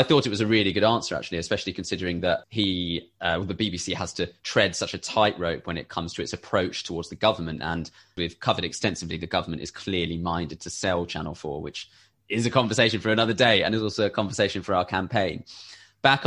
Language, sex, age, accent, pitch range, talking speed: English, male, 20-39, British, 90-115 Hz, 230 wpm